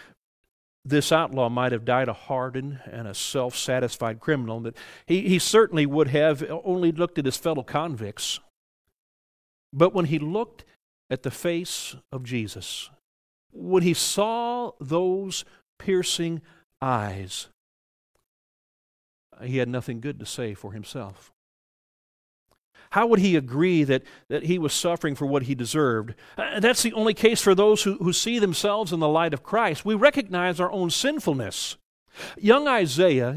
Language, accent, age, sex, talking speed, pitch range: English, American, 50-69, male, 140 wpm, 125-185 Hz